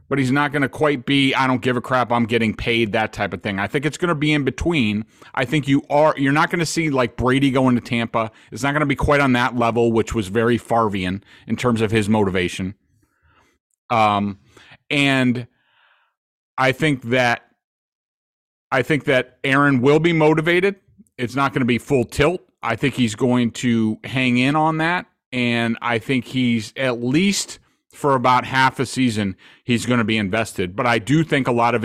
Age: 40-59